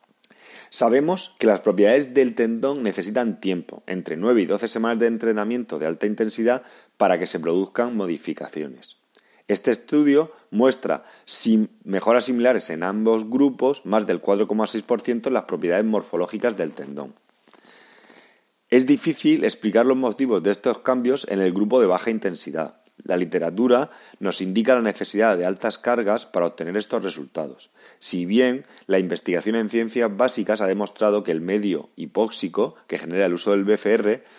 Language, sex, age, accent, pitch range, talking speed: Spanish, male, 30-49, Spanish, 100-120 Hz, 150 wpm